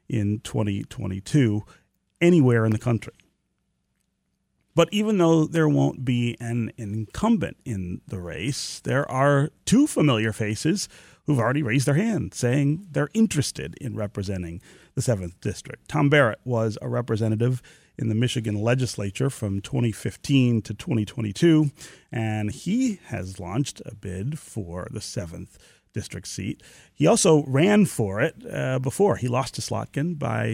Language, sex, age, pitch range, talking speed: English, male, 40-59, 105-145 Hz, 140 wpm